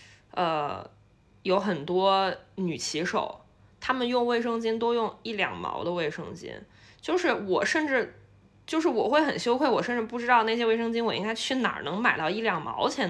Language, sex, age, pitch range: Chinese, female, 20-39, 180-255 Hz